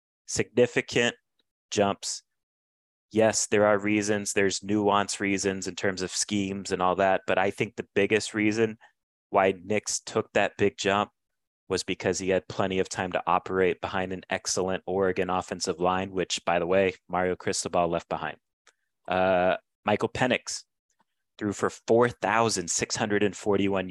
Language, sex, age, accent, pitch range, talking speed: English, male, 30-49, American, 95-110 Hz, 145 wpm